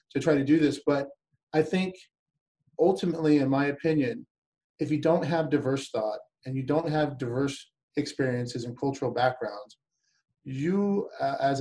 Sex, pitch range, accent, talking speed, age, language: male, 130-155 Hz, American, 155 wpm, 30-49, English